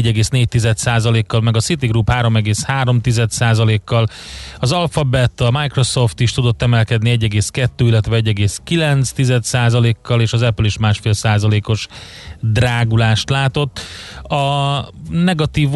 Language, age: Hungarian, 30-49